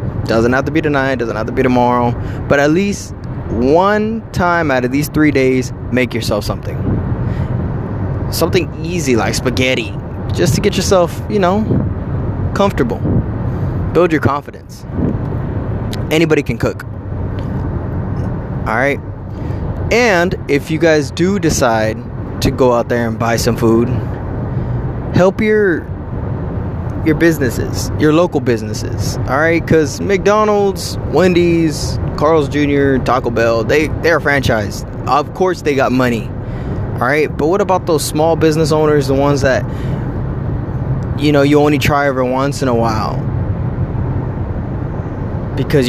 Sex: male